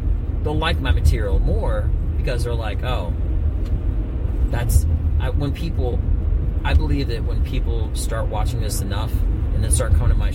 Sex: male